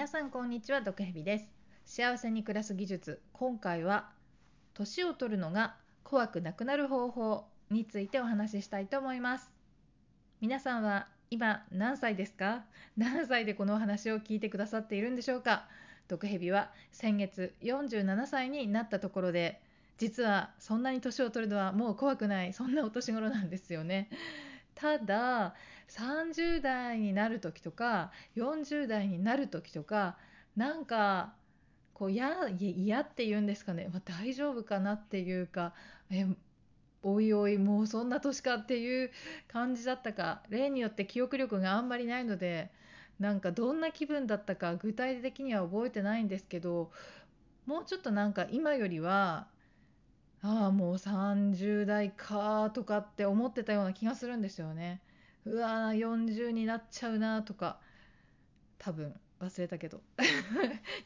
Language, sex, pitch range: Japanese, female, 195-245 Hz